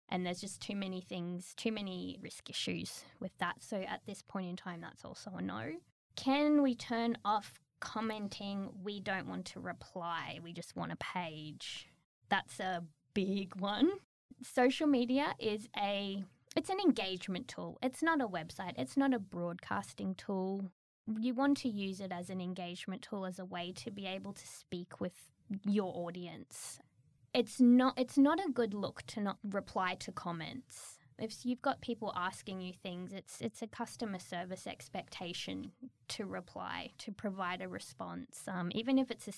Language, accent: English, Australian